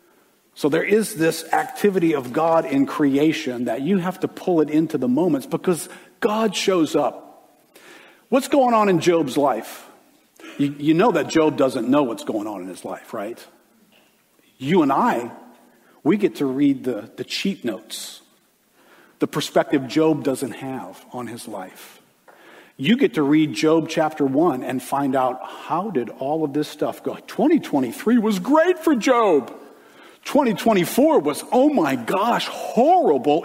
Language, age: English, 50-69